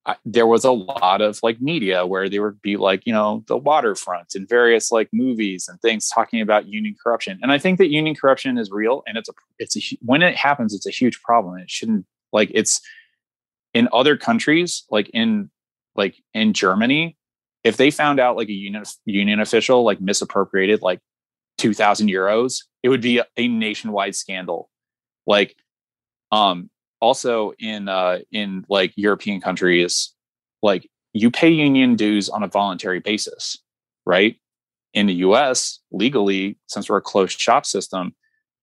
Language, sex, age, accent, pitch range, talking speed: English, male, 20-39, American, 100-130 Hz, 170 wpm